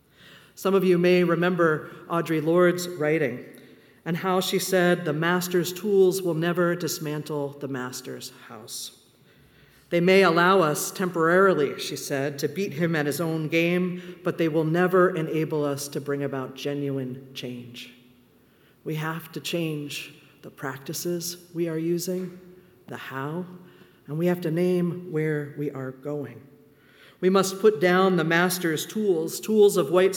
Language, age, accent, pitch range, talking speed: English, 40-59, American, 150-185 Hz, 150 wpm